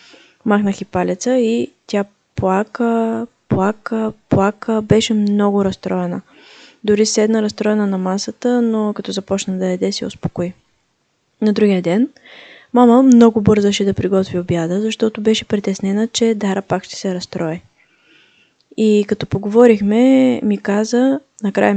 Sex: female